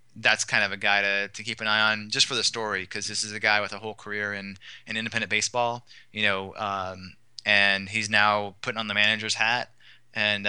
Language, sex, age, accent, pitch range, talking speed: English, male, 20-39, American, 100-115 Hz, 230 wpm